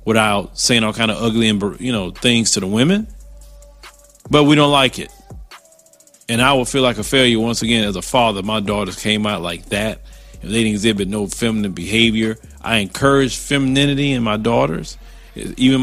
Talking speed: 190 wpm